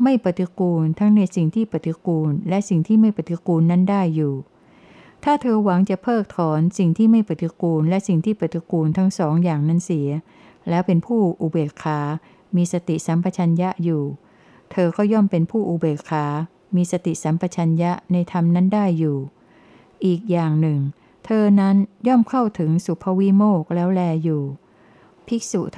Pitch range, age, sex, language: 165-195 Hz, 60-79, female, Thai